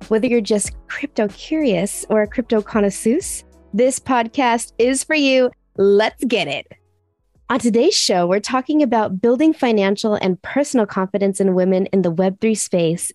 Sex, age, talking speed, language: female, 20-39, 155 wpm, English